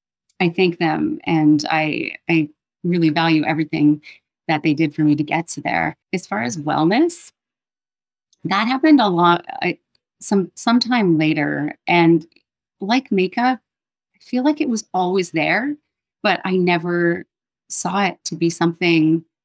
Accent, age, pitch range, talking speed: American, 30-49, 160-210 Hz, 150 wpm